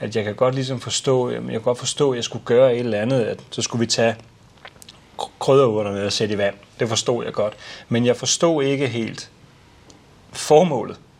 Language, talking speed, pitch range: Danish, 200 wpm, 115-135 Hz